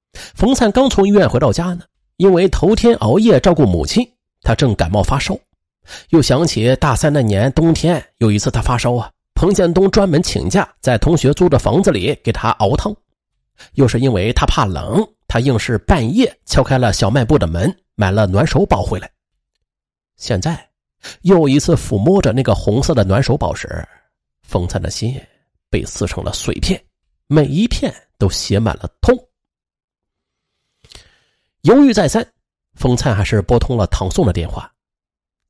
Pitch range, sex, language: 105-170 Hz, male, Chinese